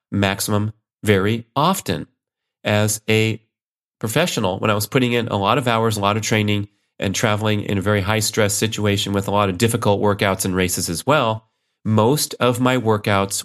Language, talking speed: English, 185 wpm